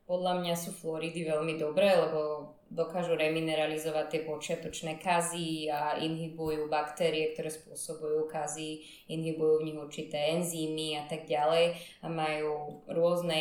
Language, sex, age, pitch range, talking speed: Slovak, female, 20-39, 155-170 Hz, 130 wpm